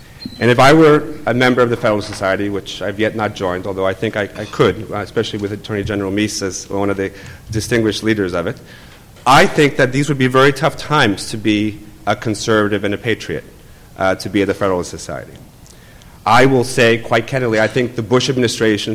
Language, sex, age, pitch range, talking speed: English, male, 40-59, 105-130 Hz, 210 wpm